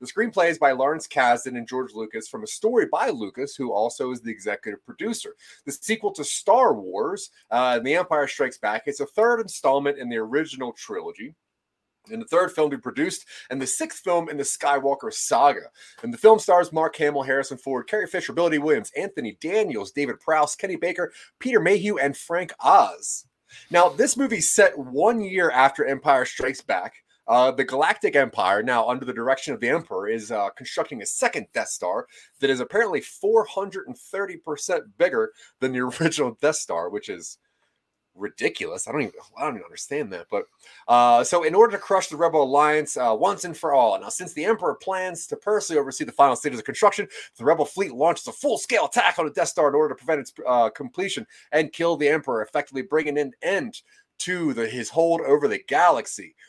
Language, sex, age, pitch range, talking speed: English, male, 30-49, 140-230 Hz, 200 wpm